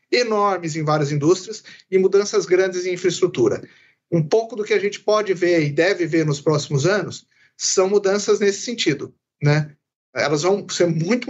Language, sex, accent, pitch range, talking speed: Portuguese, male, Brazilian, 155-210 Hz, 170 wpm